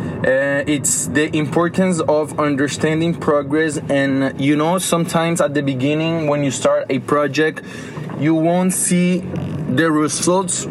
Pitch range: 150-175 Hz